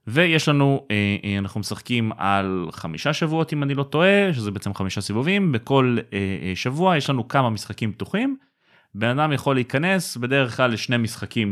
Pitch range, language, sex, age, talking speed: 100-140 Hz, Hebrew, male, 30-49, 155 wpm